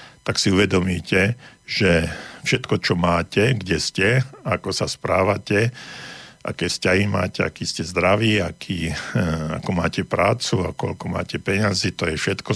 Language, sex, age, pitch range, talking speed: Slovak, male, 50-69, 85-110 Hz, 135 wpm